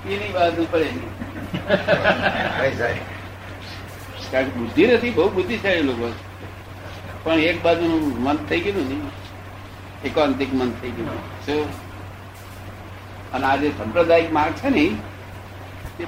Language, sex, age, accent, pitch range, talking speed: Gujarati, male, 60-79, native, 95-150 Hz, 110 wpm